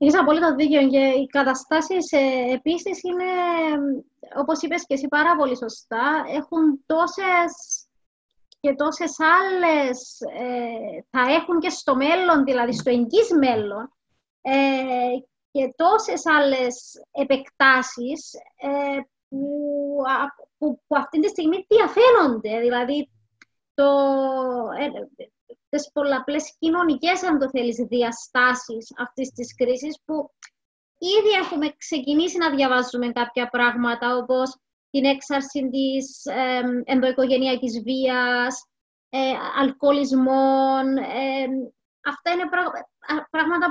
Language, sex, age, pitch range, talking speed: Greek, female, 20-39, 260-325 Hz, 100 wpm